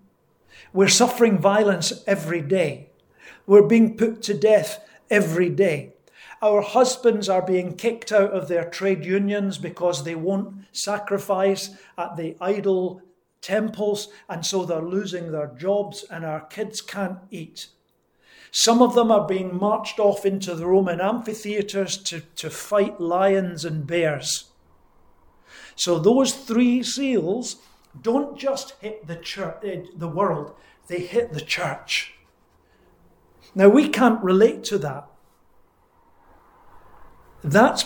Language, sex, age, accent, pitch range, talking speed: English, male, 50-69, British, 175-215 Hz, 125 wpm